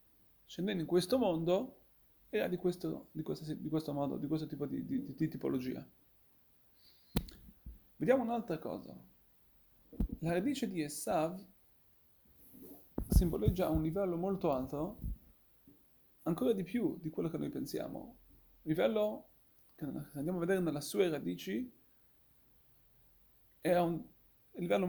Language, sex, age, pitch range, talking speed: Italian, male, 30-49, 155-195 Hz, 130 wpm